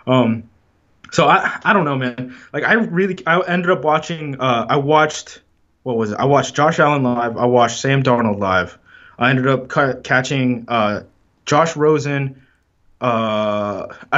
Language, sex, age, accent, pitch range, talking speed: English, male, 20-39, American, 120-150 Hz, 165 wpm